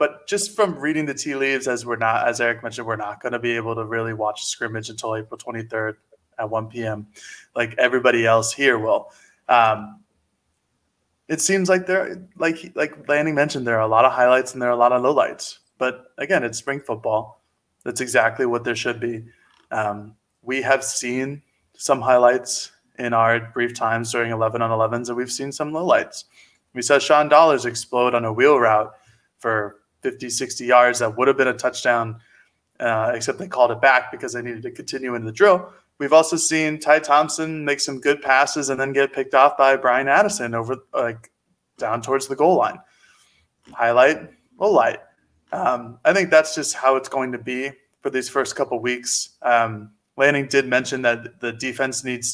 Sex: male